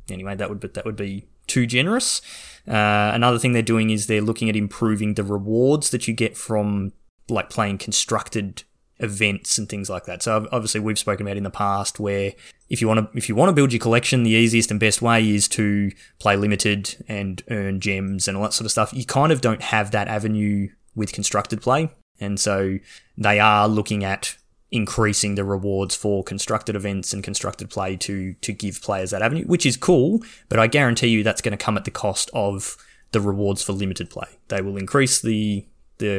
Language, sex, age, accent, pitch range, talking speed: English, male, 20-39, Australian, 100-120 Hz, 210 wpm